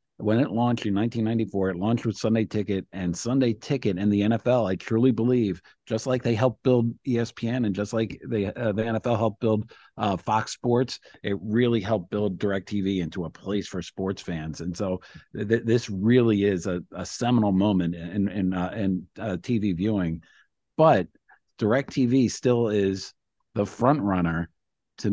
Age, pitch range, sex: 50-69, 95-115 Hz, male